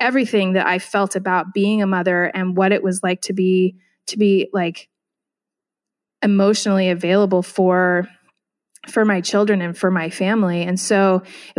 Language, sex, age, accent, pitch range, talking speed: English, female, 20-39, American, 185-215 Hz, 160 wpm